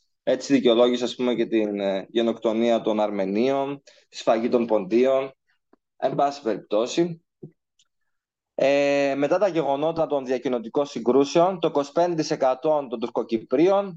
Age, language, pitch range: 20-39, Greek, 125-165 Hz